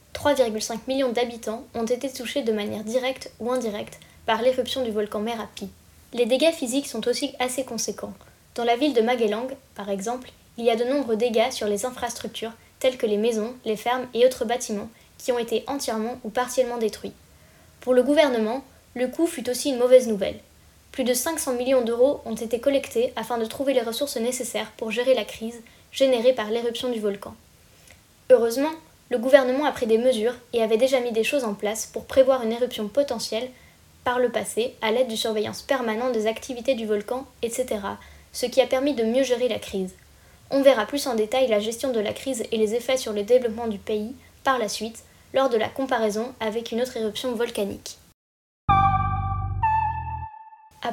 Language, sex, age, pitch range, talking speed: French, female, 10-29, 225-260 Hz, 190 wpm